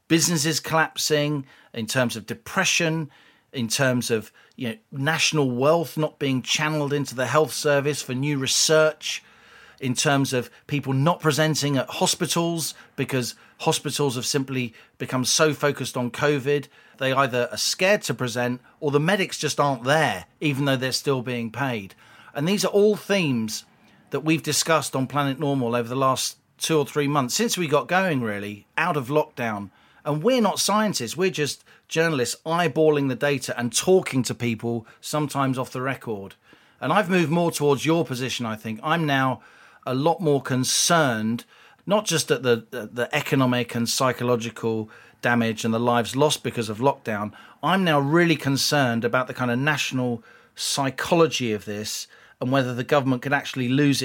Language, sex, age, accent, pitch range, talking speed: English, male, 40-59, British, 125-155 Hz, 170 wpm